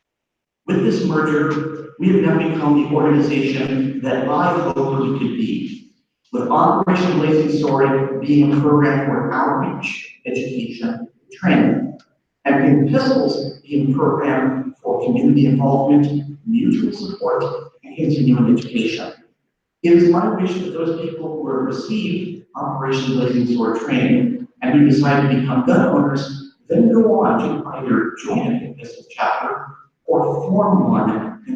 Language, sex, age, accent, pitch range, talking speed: English, male, 40-59, American, 140-230 Hz, 140 wpm